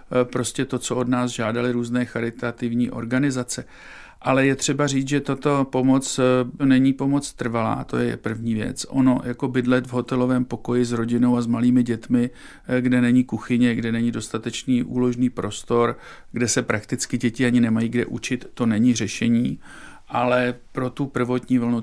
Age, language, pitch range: 50-69, Czech, 120-135 Hz